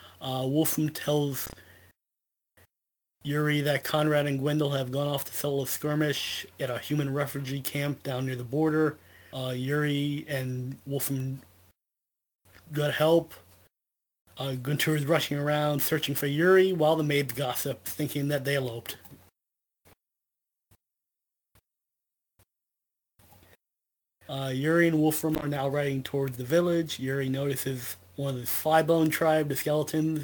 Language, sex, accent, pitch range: English, male, American, 125-145 Hz